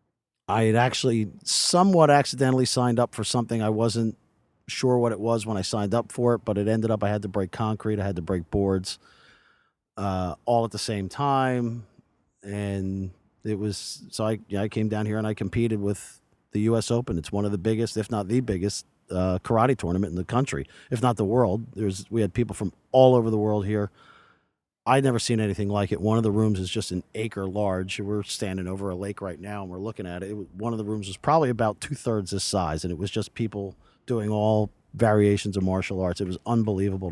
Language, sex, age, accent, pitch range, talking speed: English, male, 40-59, American, 95-115 Hz, 225 wpm